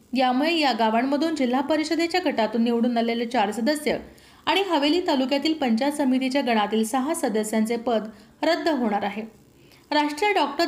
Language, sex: Marathi, female